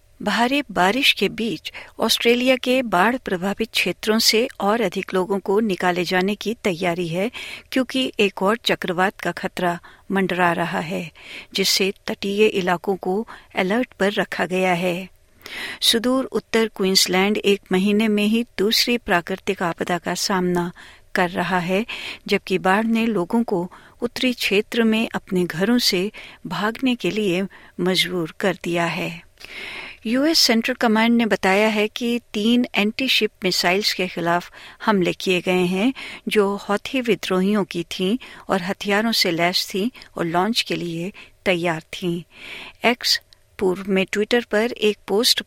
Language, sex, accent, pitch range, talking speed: Hindi, female, native, 185-225 Hz, 145 wpm